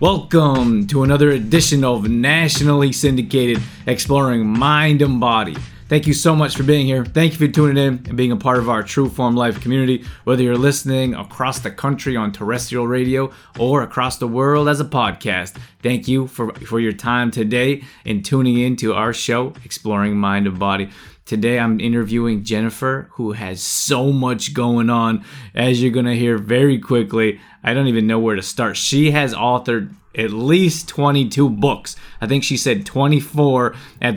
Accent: American